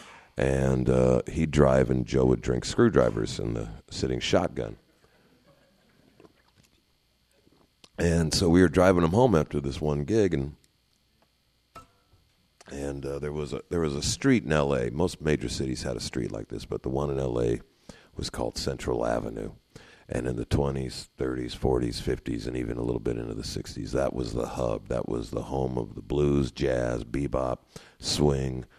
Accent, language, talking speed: American, English, 170 wpm